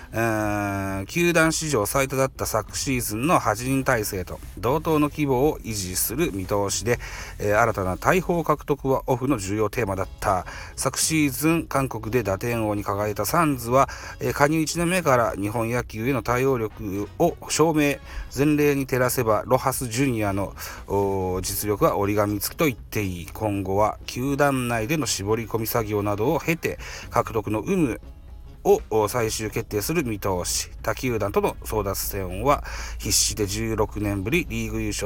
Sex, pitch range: male, 95-135 Hz